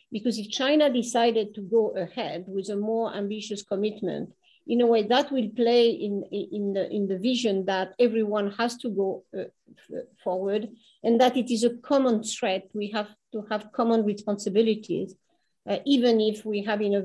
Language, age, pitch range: English, 50-69, 205-245 Hz